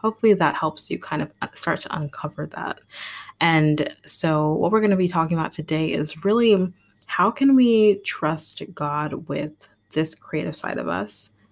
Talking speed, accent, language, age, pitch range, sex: 170 wpm, American, English, 20-39, 150-180 Hz, female